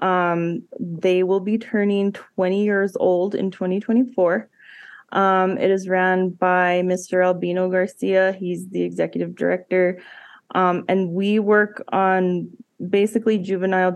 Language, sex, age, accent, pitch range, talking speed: English, female, 20-39, American, 180-200 Hz, 125 wpm